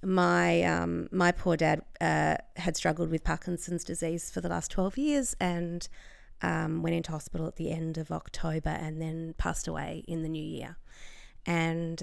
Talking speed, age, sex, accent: 175 wpm, 30-49, female, Australian